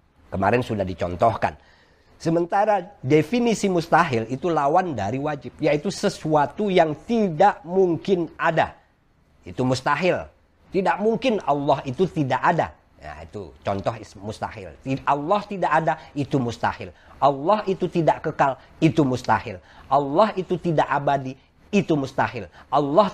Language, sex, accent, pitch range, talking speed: Indonesian, male, native, 95-155 Hz, 120 wpm